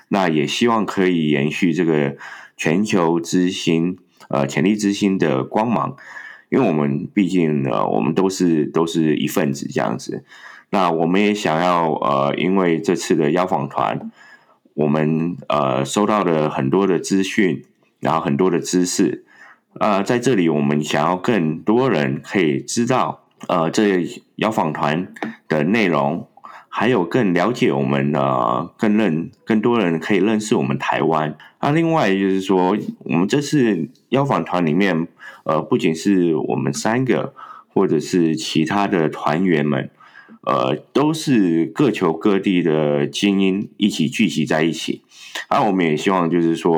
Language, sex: Chinese, male